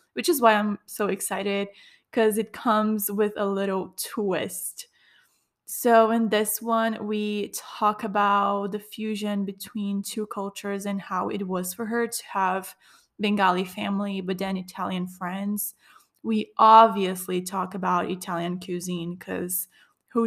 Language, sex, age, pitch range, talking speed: English, female, 20-39, 200-225 Hz, 140 wpm